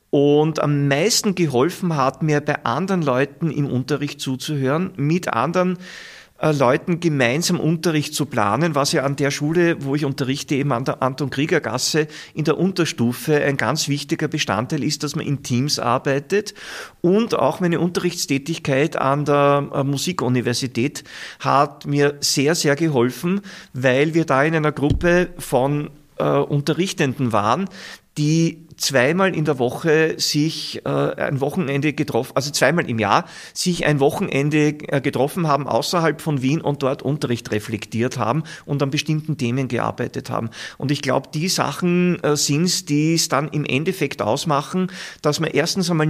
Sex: male